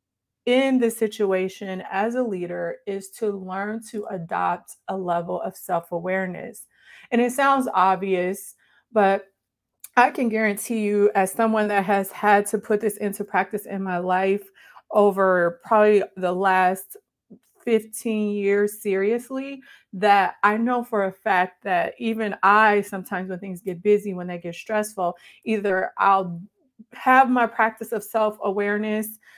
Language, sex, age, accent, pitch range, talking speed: English, female, 30-49, American, 190-225 Hz, 140 wpm